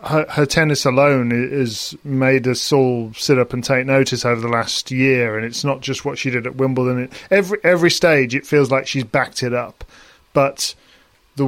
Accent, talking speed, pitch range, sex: British, 200 wpm, 125-145 Hz, male